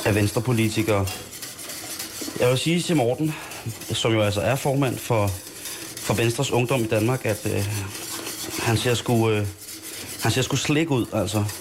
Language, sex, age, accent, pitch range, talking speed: Danish, male, 30-49, native, 105-145 Hz, 140 wpm